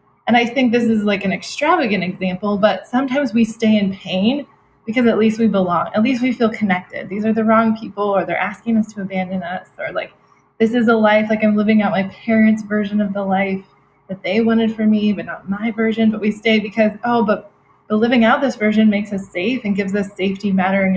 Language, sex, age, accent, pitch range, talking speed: English, female, 20-39, American, 185-220 Hz, 230 wpm